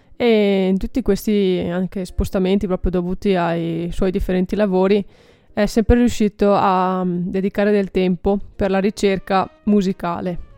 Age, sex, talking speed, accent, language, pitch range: 20-39, female, 125 wpm, native, Italian, 185-210 Hz